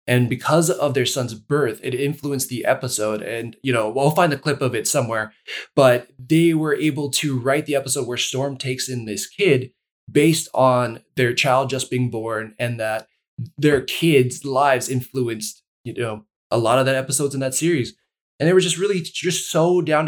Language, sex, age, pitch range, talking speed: English, male, 20-39, 125-150 Hz, 195 wpm